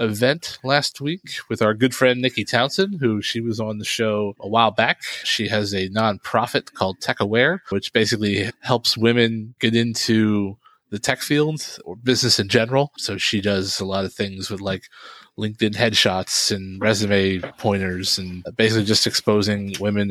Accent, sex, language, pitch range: American, male, English, 100-125 Hz